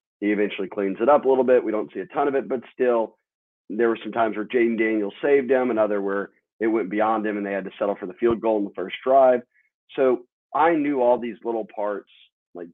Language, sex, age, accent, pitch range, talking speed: English, male, 40-59, American, 100-125 Hz, 255 wpm